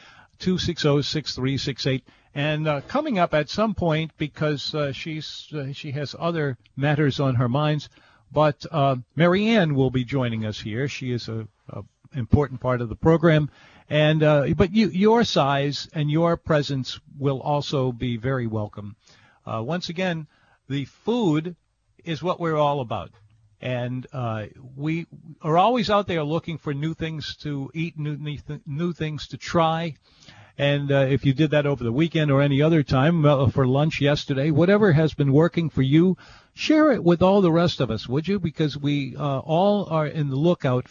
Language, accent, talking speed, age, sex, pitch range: English, American, 185 wpm, 50-69, male, 130-165 Hz